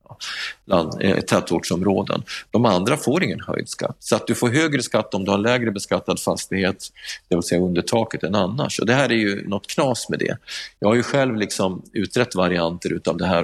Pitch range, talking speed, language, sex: 90-120 Hz, 205 wpm, Swedish, male